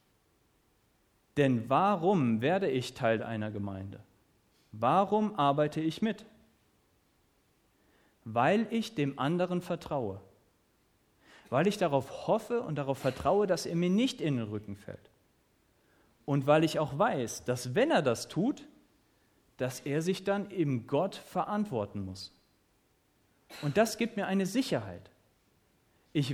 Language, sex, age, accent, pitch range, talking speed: German, male, 40-59, German, 120-195 Hz, 130 wpm